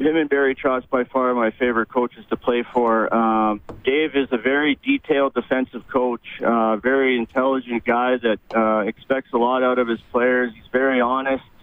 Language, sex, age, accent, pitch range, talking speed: English, male, 40-59, American, 115-130 Hz, 185 wpm